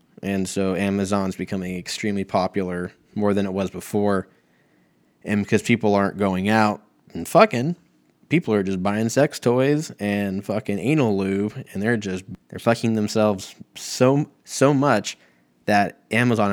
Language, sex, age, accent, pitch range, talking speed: English, male, 20-39, American, 95-115 Hz, 145 wpm